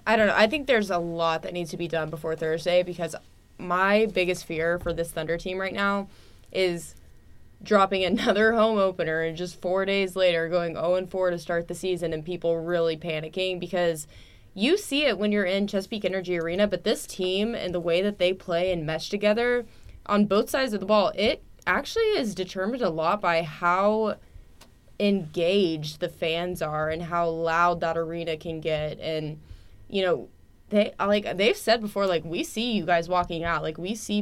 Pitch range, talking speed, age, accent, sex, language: 165-205 Hz, 195 wpm, 20-39, American, female, English